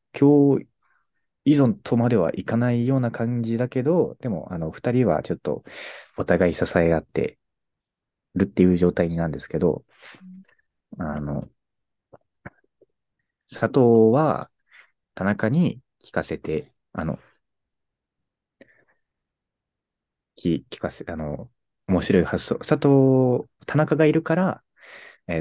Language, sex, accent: Japanese, male, native